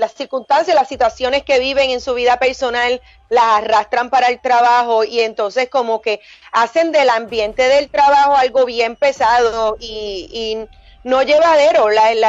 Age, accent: 30-49, American